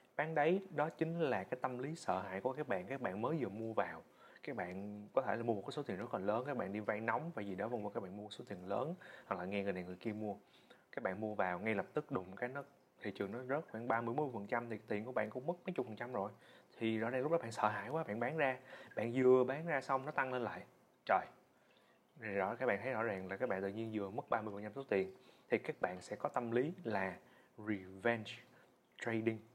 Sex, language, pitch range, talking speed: male, Vietnamese, 105-135 Hz, 270 wpm